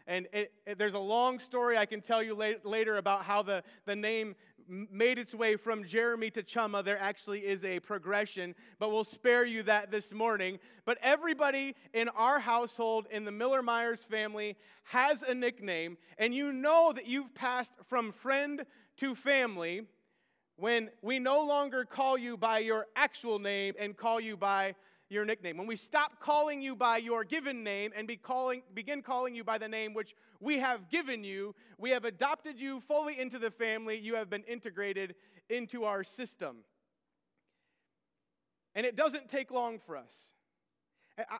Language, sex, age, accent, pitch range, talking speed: English, male, 30-49, American, 205-250 Hz, 170 wpm